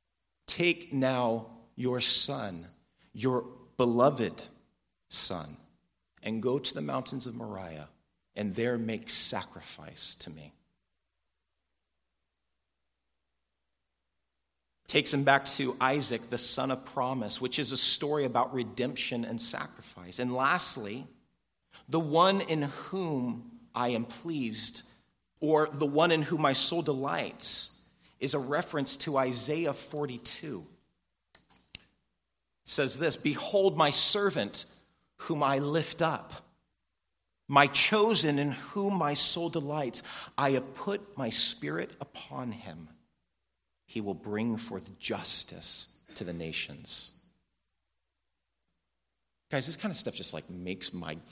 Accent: American